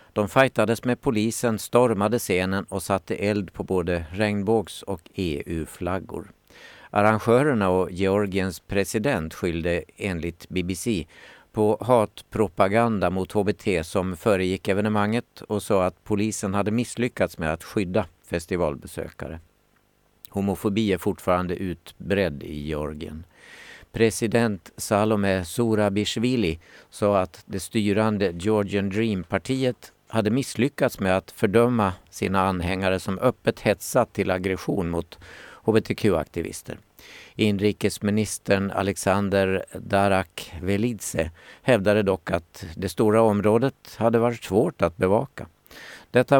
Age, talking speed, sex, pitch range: 50-69, 105 wpm, male, 95-110 Hz